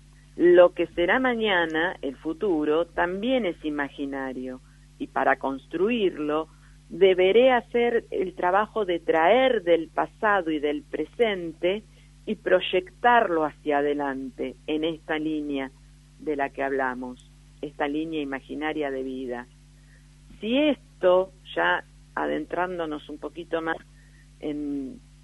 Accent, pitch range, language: Argentinian, 145-195 Hz, Spanish